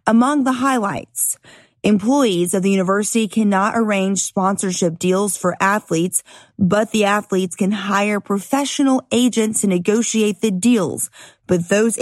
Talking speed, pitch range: 130 wpm, 190-230 Hz